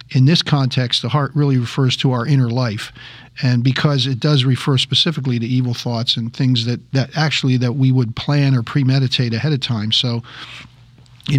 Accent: American